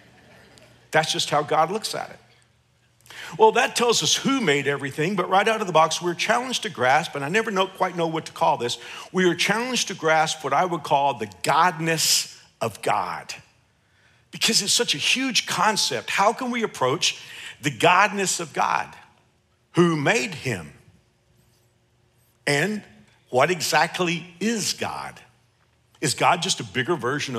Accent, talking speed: American, 160 wpm